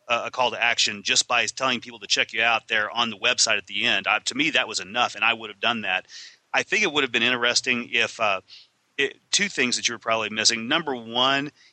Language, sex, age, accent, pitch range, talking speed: English, male, 30-49, American, 120-140 Hz, 245 wpm